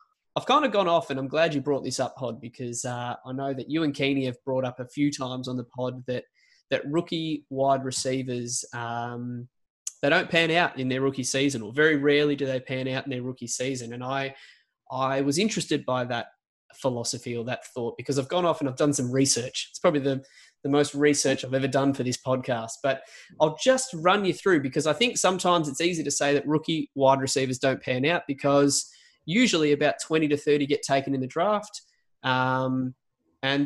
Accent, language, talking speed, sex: Australian, English, 215 wpm, male